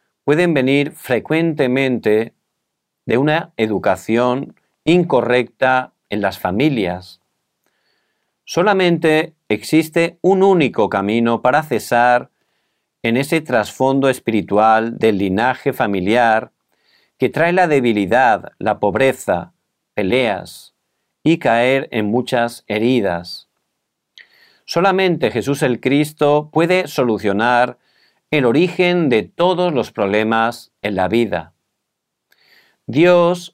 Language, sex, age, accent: Korean, male, 40-59, Spanish